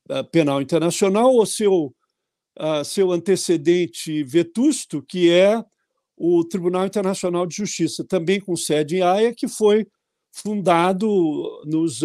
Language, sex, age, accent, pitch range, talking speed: Portuguese, male, 60-79, Brazilian, 160-205 Hz, 115 wpm